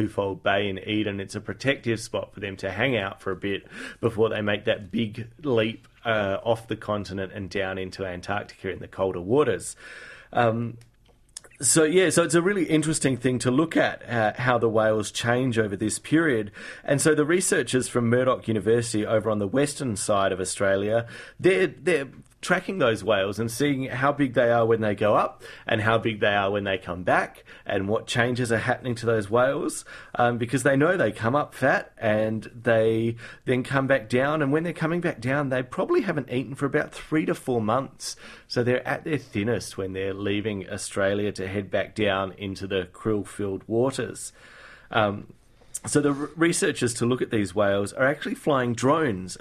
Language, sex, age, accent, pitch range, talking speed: English, male, 30-49, Australian, 100-130 Hz, 195 wpm